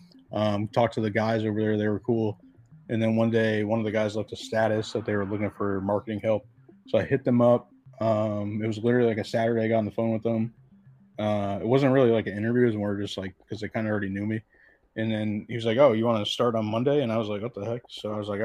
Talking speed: 290 wpm